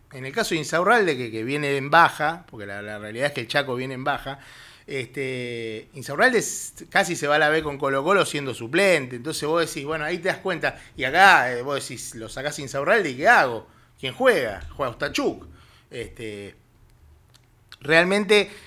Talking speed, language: 190 wpm, Spanish